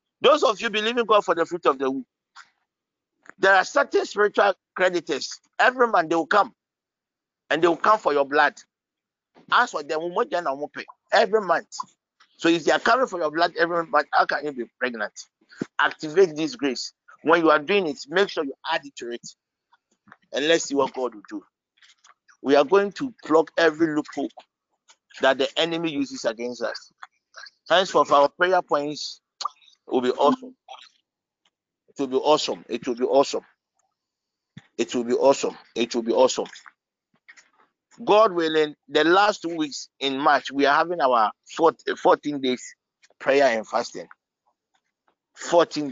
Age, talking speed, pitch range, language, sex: 50-69, 170 wpm, 140-205 Hz, English, male